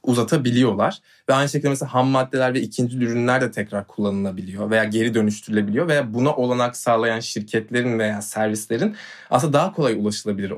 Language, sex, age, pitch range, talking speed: Turkish, male, 20-39, 105-125 Hz, 155 wpm